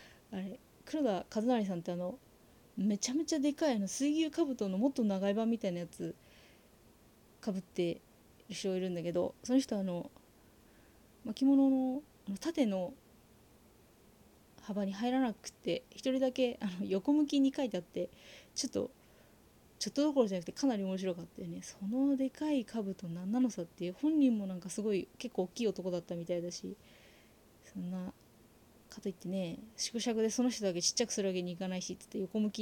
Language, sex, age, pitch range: Japanese, female, 20-39, 185-250 Hz